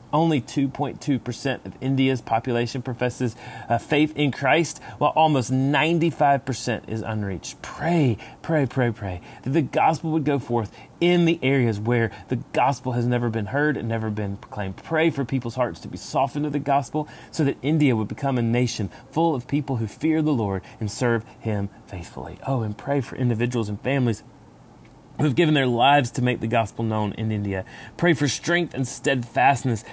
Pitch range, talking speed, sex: 115-145 Hz, 180 wpm, male